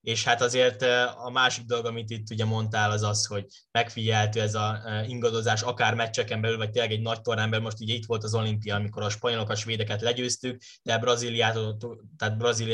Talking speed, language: 200 wpm, Hungarian